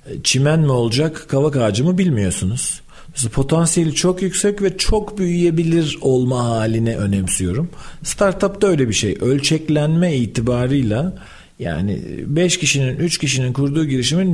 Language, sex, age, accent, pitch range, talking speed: Turkish, male, 40-59, native, 115-165 Hz, 135 wpm